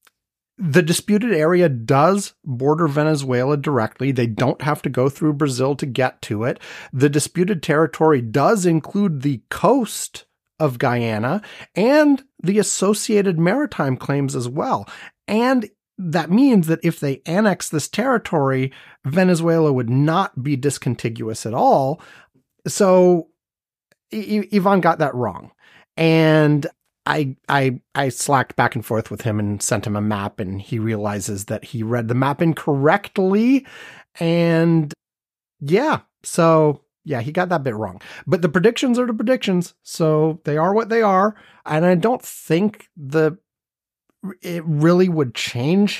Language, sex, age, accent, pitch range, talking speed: English, male, 30-49, American, 135-195 Hz, 140 wpm